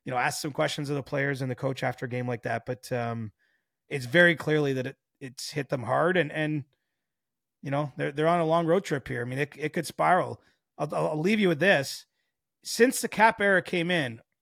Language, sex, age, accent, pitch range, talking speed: English, male, 30-49, American, 130-160 Hz, 235 wpm